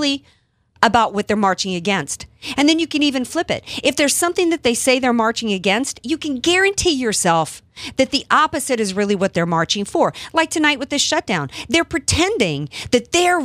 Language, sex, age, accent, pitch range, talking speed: English, female, 50-69, American, 195-285 Hz, 190 wpm